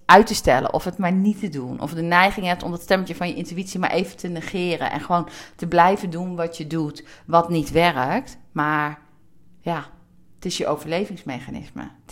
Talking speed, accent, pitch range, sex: 205 wpm, Dutch, 155-185 Hz, female